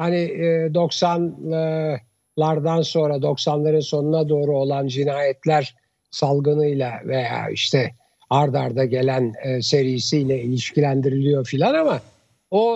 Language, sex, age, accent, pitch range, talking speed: Turkish, male, 60-79, native, 145-190 Hz, 85 wpm